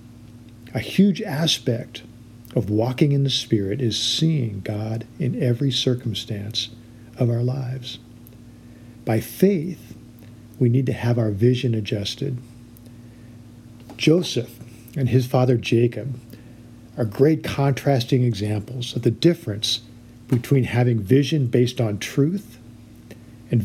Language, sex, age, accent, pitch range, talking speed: English, male, 50-69, American, 115-130 Hz, 115 wpm